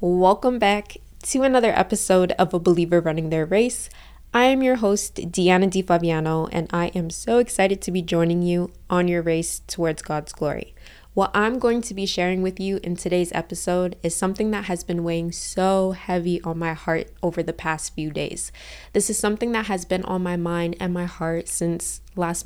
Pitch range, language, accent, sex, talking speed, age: 170-200 Hz, English, American, female, 195 wpm, 20-39